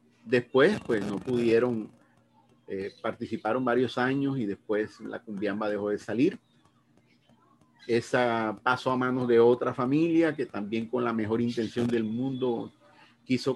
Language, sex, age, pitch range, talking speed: Spanish, male, 40-59, 105-125 Hz, 135 wpm